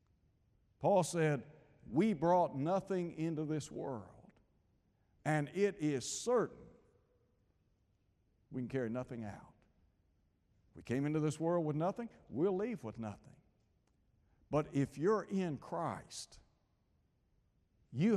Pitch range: 120-185 Hz